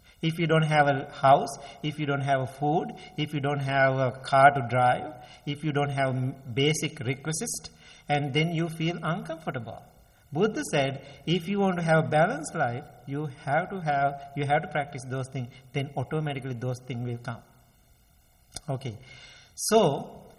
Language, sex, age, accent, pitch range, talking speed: English, male, 50-69, Indian, 130-160 Hz, 175 wpm